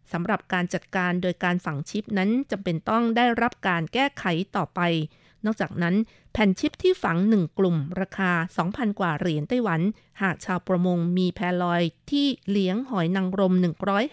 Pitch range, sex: 180-225 Hz, female